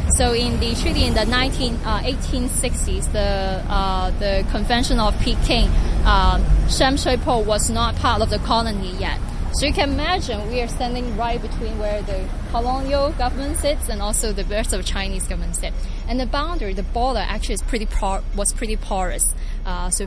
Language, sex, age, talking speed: English, female, 20-39, 190 wpm